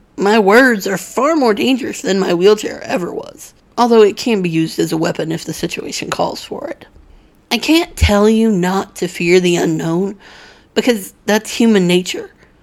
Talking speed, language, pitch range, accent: 180 wpm, English, 190-235 Hz, American